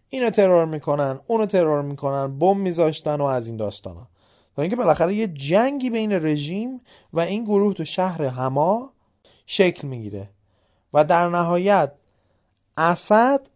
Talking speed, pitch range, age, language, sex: 135 wpm, 110-180 Hz, 30-49, Persian, male